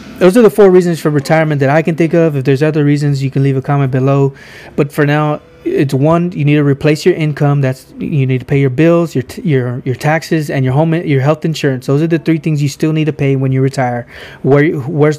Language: English